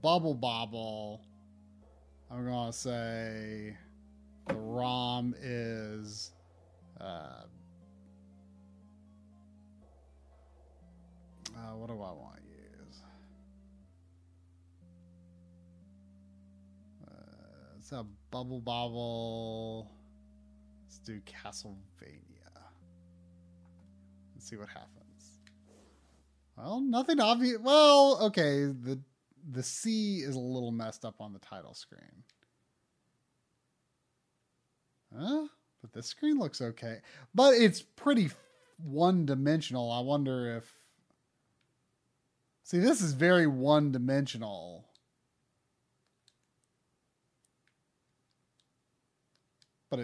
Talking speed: 80 wpm